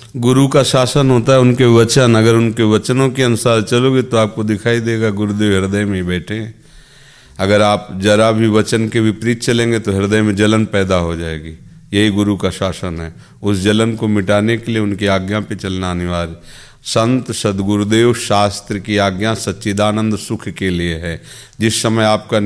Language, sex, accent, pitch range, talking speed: Hindi, male, native, 100-115 Hz, 175 wpm